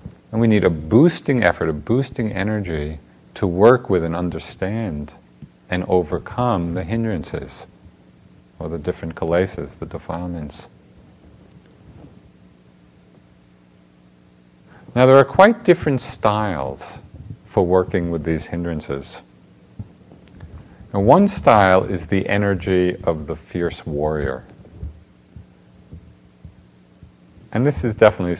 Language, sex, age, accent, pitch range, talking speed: English, male, 50-69, American, 75-110 Hz, 105 wpm